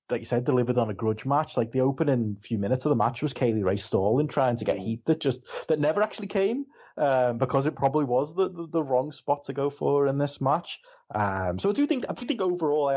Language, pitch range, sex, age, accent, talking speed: English, 115-155 Hz, male, 20-39, British, 260 wpm